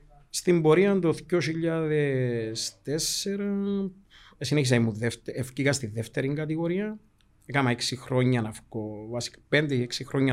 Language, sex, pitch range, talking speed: Greek, male, 120-150 Hz, 115 wpm